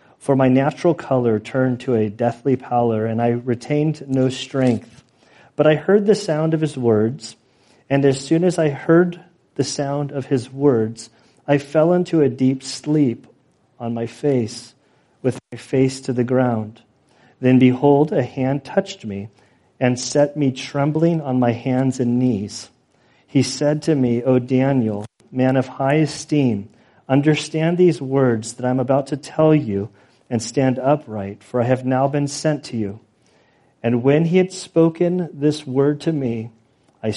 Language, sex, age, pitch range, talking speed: English, male, 40-59, 120-145 Hz, 165 wpm